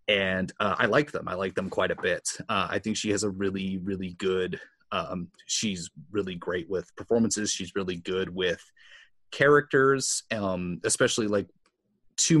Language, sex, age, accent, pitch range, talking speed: English, male, 30-49, American, 95-110 Hz, 170 wpm